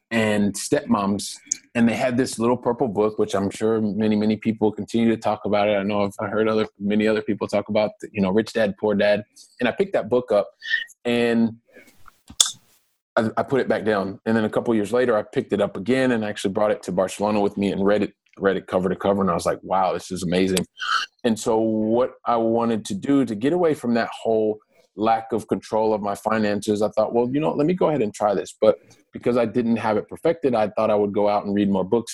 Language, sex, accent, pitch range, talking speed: English, male, American, 100-115 Hz, 245 wpm